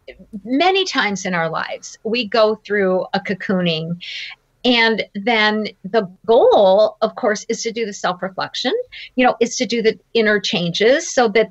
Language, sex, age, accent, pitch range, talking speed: English, female, 50-69, American, 190-260 Hz, 165 wpm